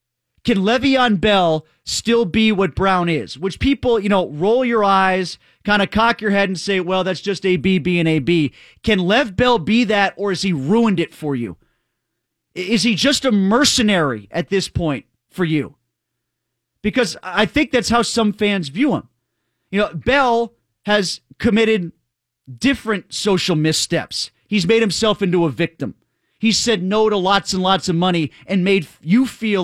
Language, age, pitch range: English, 30-49, 160-220 Hz